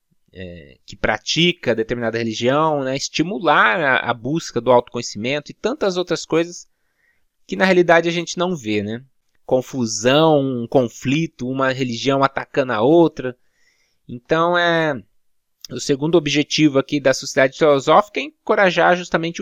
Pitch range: 125-170 Hz